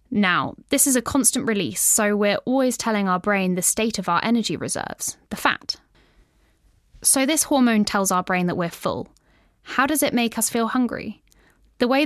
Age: 10-29